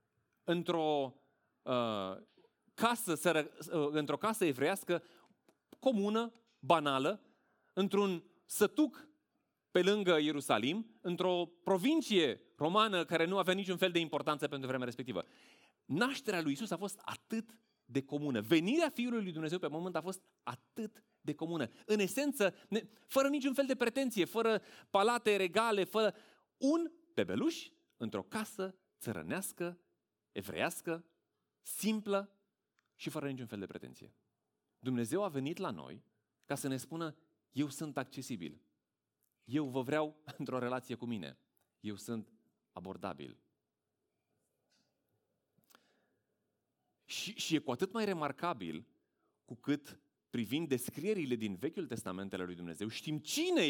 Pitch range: 130-215 Hz